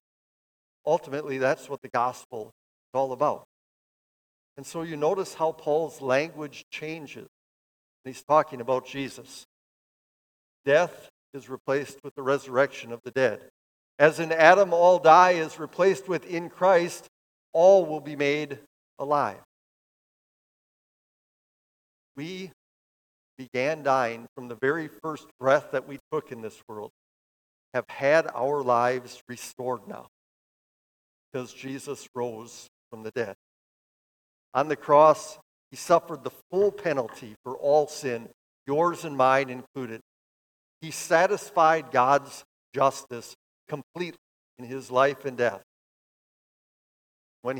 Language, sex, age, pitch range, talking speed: English, male, 50-69, 125-155 Hz, 120 wpm